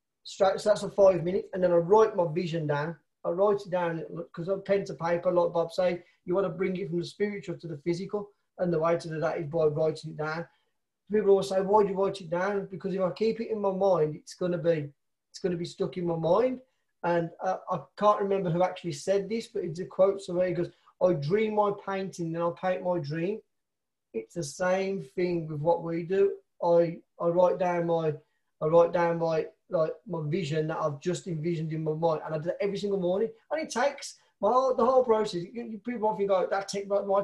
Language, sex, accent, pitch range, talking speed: English, male, British, 170-200 Hz, 245 wpm